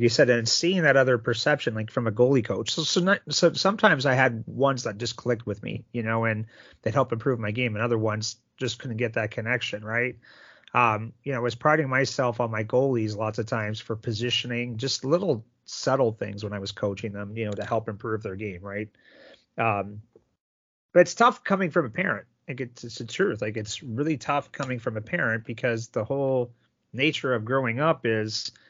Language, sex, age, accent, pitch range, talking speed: English, male, 30-49, American, 110-135 Hz, 215 wpm